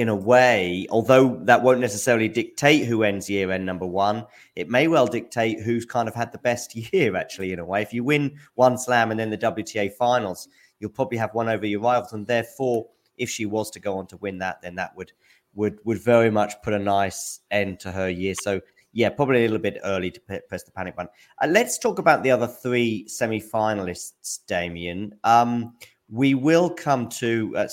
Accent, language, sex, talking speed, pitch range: British, English, male, 210 wpm, 100-125 Hz